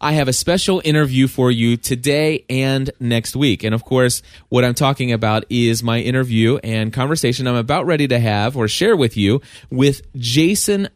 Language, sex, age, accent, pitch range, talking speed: English, male, 20-39, American, 115-145 Hz, 185 wpm